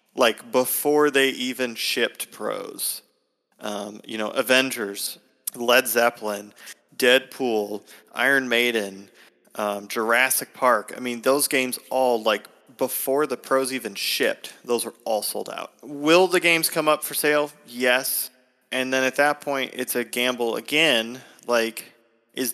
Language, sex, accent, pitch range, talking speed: English, male, American, 110-130 Hz, 140 wpm